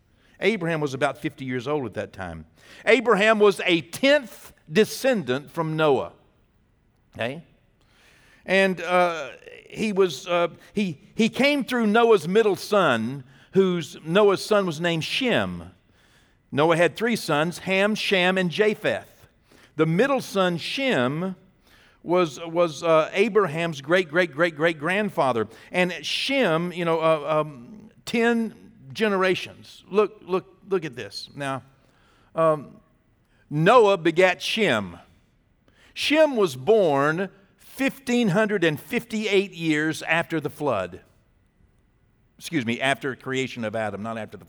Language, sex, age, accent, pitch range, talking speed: English, male, 60-79, American, 135-205 Hz, 125 wpm